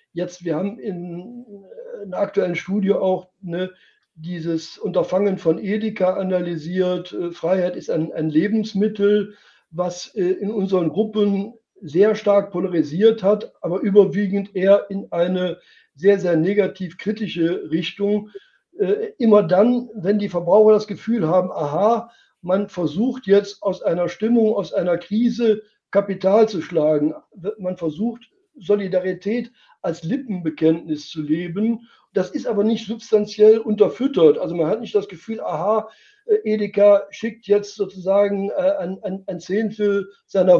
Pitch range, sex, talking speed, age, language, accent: 185-215 Hz, male, 130 wpm, 60-79, German, German